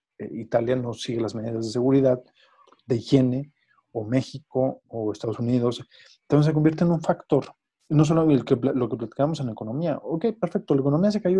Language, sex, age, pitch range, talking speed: Spanish, male, 40-59, 125-160 Hz, 190 wpm